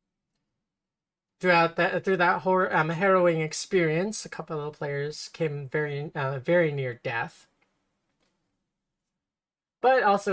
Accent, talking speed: American, 115 wpm